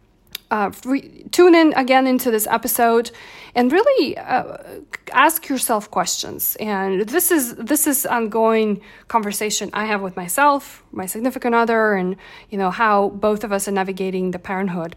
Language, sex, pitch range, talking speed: English, female, 200-250 Hz, 150 wpm